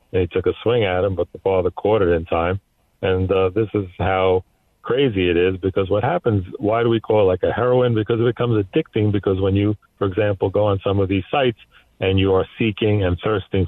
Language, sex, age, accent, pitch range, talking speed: English, male, 40-59, American, 95-105 Hz, 235 wpm